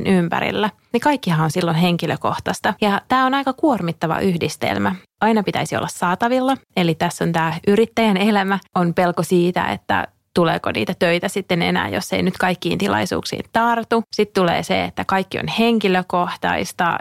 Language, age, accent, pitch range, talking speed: Finnish, 30-49, native, 170-215 Hz, 155 wpm